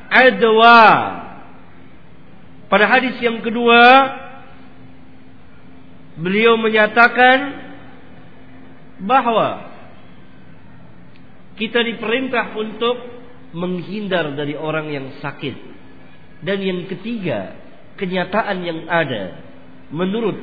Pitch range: 160-235 Hz